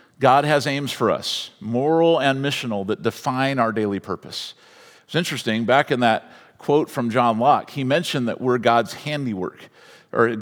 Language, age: English, 50-69